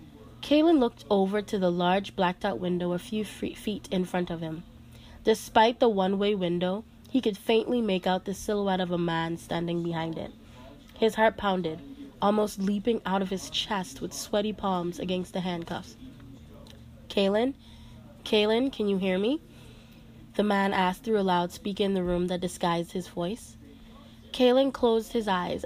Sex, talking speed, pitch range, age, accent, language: female, 170 wpm, 180-220 Hz, 20-39, American, English